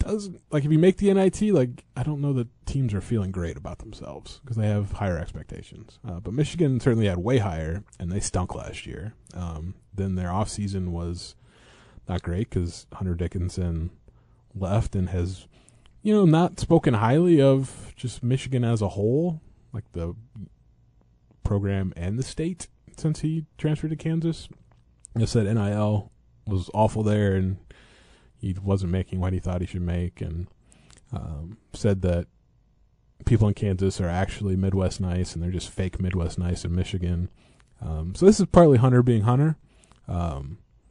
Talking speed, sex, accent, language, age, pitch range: 170 wpm, male, American, English, 30-49, 90-125 Hz